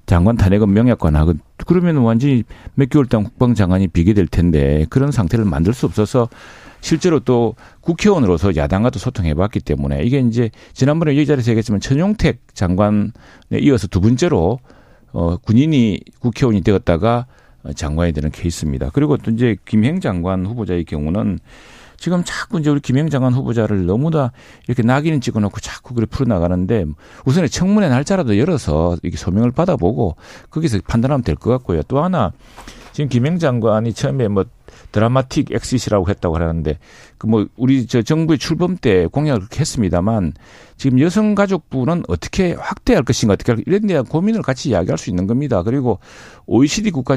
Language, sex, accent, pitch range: Korean, male, native, 90-135 Hz